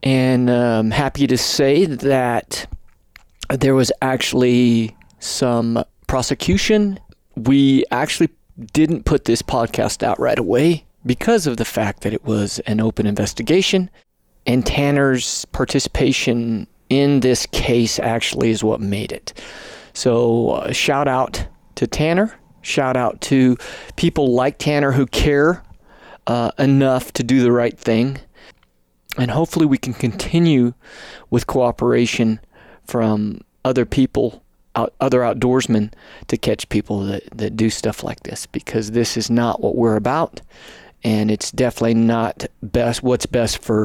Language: English